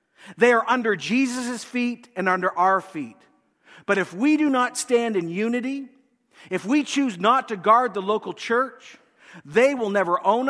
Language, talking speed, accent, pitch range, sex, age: English, 170 wpm, American, 170-255 Hz, male, 50-69